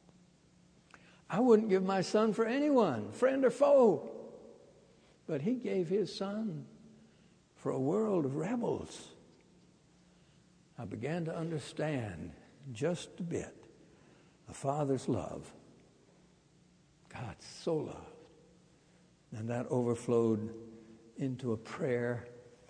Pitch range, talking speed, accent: 120-180 Hz, 105 wpm, American